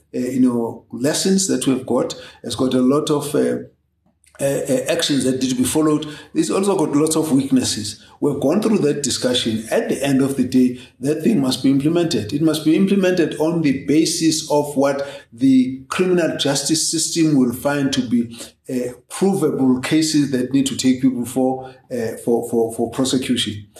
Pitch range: 125-155 Hz